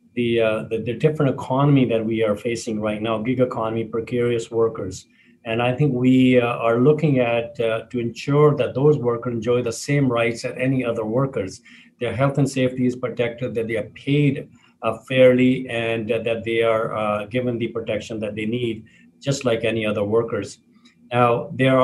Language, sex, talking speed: English, male, 190 wpm